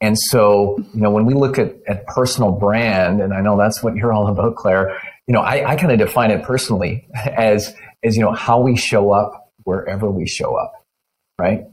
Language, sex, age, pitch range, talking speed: English, male, 30-49, 105-130 Hz, 215 wpm